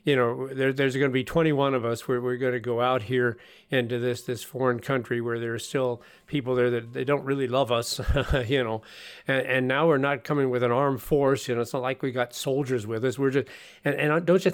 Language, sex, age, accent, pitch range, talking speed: English, male, 50-69, American, 130-185 Hz, 255 wpm